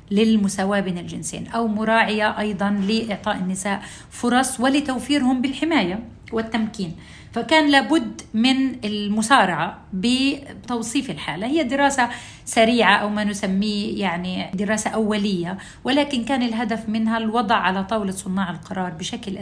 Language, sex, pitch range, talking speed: Arabic, female, 200-245 Hz, 115 wpm